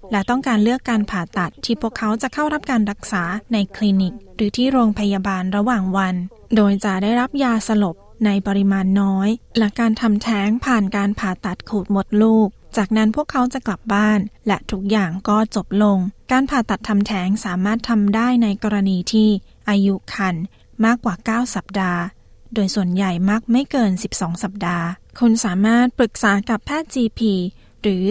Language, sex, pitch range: Thai, female, 195-225 Hz